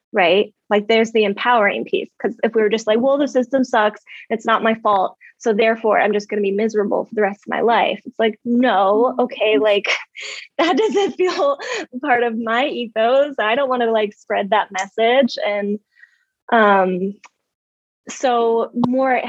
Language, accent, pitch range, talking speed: English, American, 205-245 Hz, 180 wpm